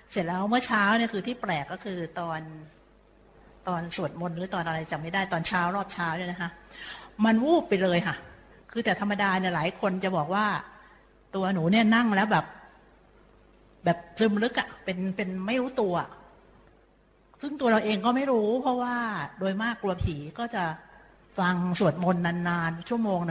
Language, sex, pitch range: Thai, female, 180-225 Hz